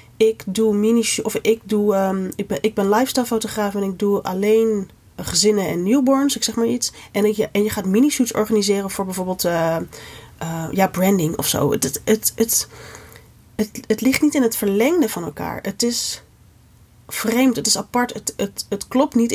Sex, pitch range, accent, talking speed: female, 180-230 Hz, Dutch, 185 wpm